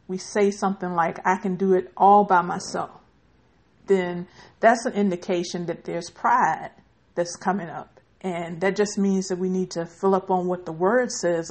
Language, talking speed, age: English, 190 wpm, 50-69